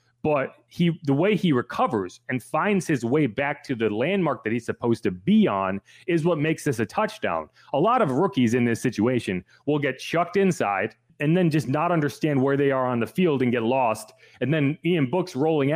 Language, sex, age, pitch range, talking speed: English, male, 30-49, 125-165 Hz, 215 wpm